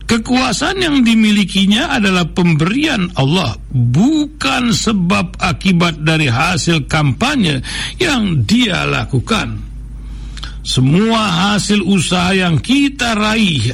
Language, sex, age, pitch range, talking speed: Indonesian, male, 60-79, 140-215 Hz, 90 wpm